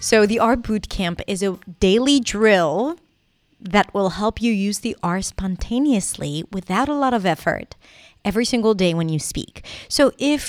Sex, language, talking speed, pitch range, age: female, English, 165 wpm, 180-230 Hz, 30-49